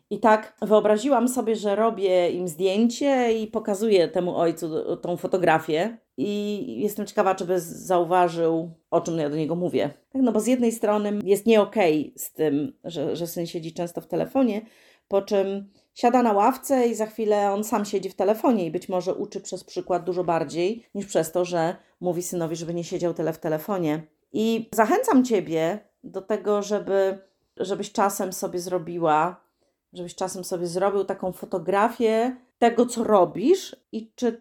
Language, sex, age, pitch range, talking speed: Polish, female, 30-49, 180-225 Hz, 170 wpm